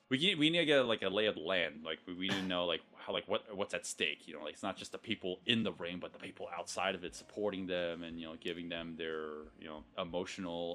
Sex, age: male, 20-39